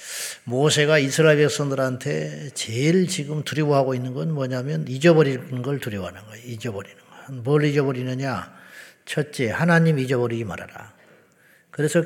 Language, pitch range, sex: Korean, 125-160 Hz, male